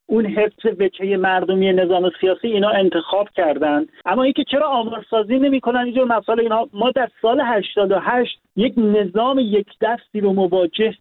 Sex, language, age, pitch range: male, Persian, 50-69, 195-245 Hz